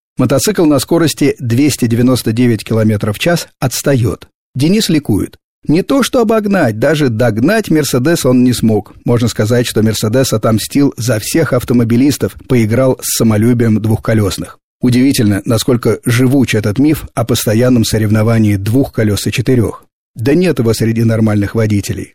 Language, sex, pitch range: Russian, male, 110-135 Hz